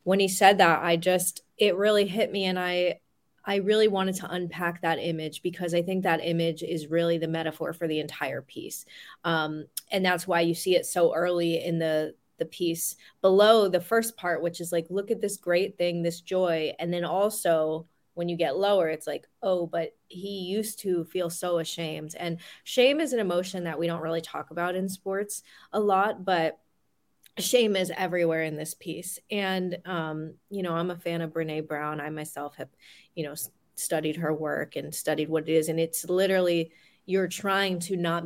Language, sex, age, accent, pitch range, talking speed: English, female, 20-39, American, 165-195 Hz, 200 wpm